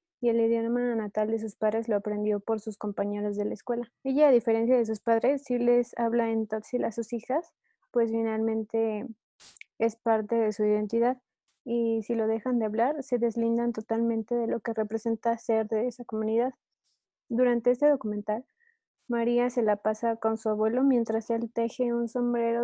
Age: 20-39